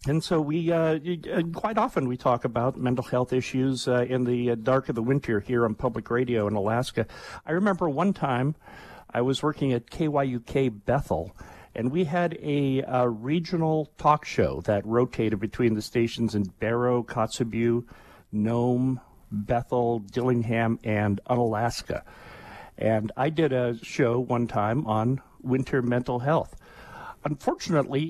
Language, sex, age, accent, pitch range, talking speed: English, male, 50-69, American, 115-155 Hz, 145 wpm